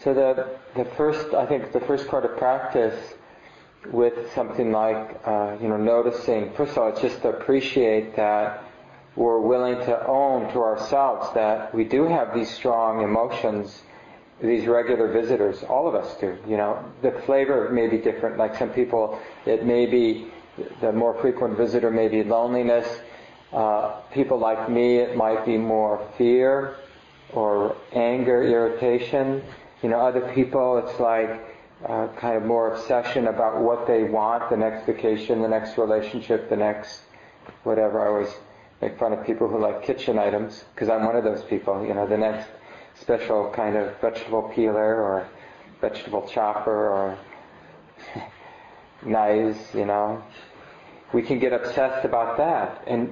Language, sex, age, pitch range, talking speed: English, male, 40-59, 110-120 Hz, 160 wpm